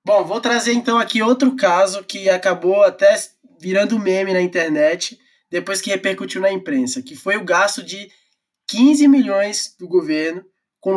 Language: Portuguese